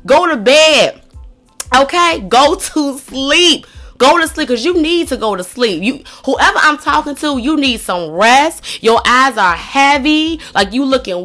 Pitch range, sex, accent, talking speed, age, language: 205-265 Hz, female, American, 175 wpm, 20-39, English